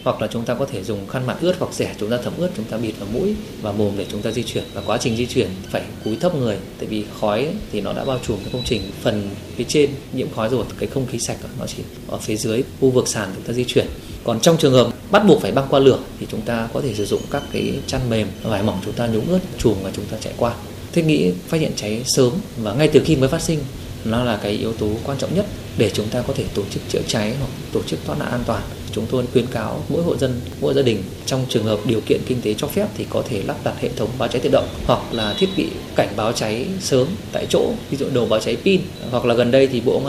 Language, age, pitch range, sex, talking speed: Vietnamese, 20-39, 110-135 Hz, male, 290 wpm